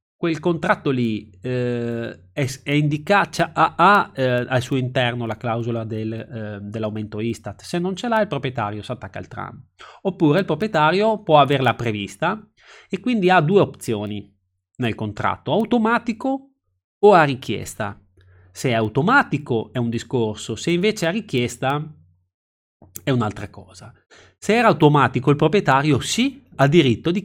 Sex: male